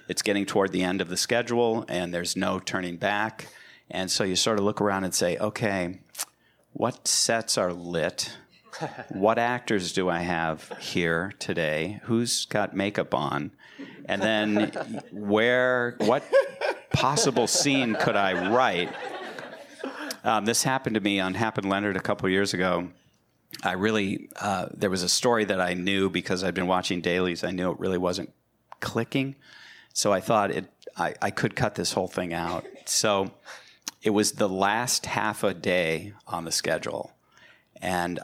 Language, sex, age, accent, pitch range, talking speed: English, male, 50-69, American, 90-110 Hz, 165 wpm